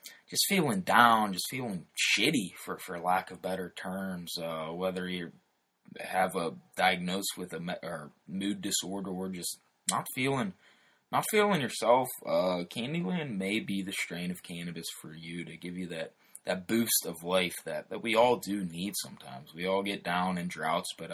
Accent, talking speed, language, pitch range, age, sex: American, 180 wpm, English, 90-105 Hz, 20-39, male